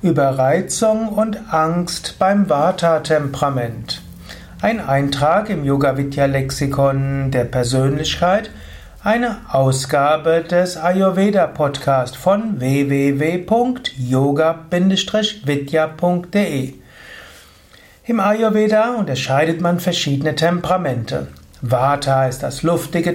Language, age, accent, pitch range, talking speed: German, 60-79, German, 140-190 Hz, 75 wpm